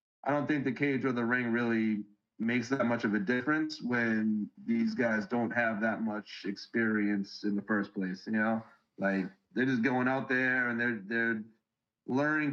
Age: 30-49